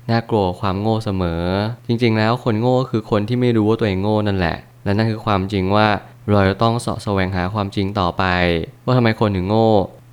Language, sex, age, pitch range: Thai, male, 20-39, 95-115 Hz